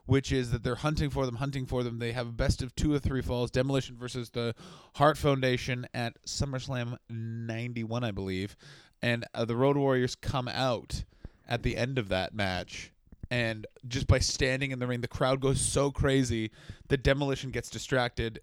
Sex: male